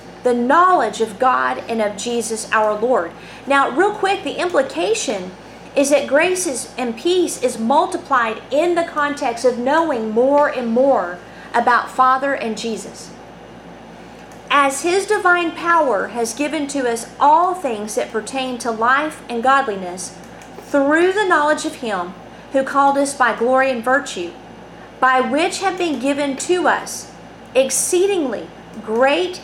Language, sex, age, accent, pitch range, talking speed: English, female, 40-59, American, 235-315 Hz, 145 wpm